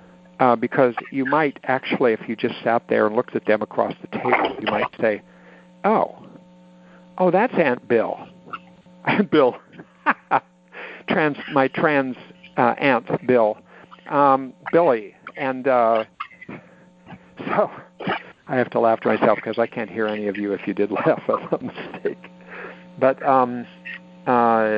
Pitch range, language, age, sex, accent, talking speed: 110-170 Hz, English, 60-79, male, American, 145 wpm